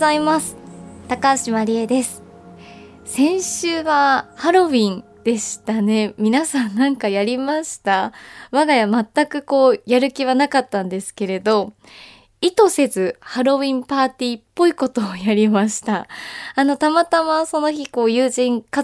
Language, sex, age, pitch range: Japanese, female, 20-39, 220-300 Hz